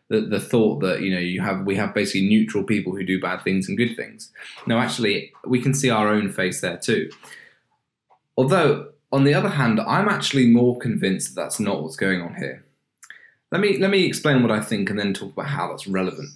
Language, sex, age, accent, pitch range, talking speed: English, male, 20-39, British, 100-140 Hz, 225 wpm